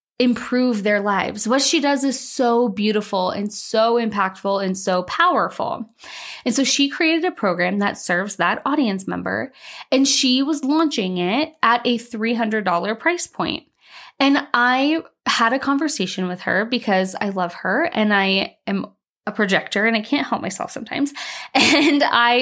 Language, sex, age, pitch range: English, female, 20-39, 200-270 Hz